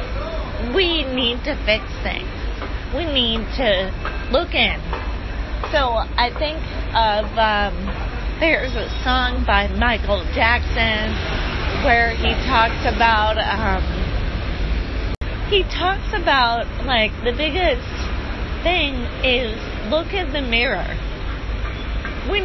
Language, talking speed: English, 105 wpm